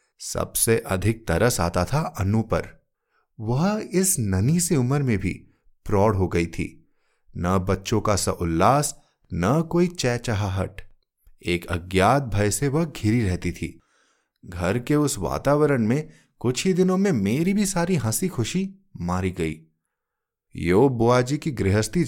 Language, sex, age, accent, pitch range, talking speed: Hindi, male, 30-49, native, 95-155 Hz, 145 wpm